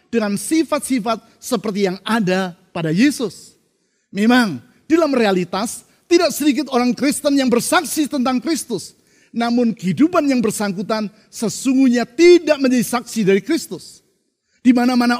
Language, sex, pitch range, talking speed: Indonesian, male, 200-275 Hz, 115 wpm